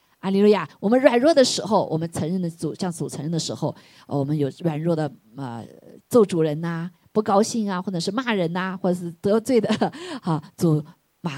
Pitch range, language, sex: 150-180 Hz, Chinese, female